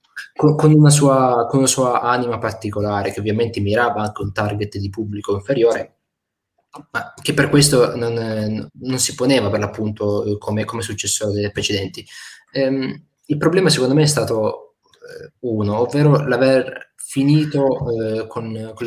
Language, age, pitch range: Italian, 20-39, 105-145 Hz